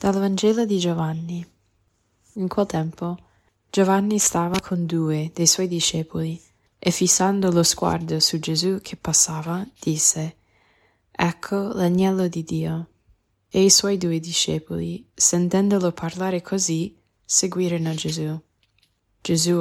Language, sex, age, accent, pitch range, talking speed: Italian, female, 20-39, native, 150-180 Hz, 115 wpm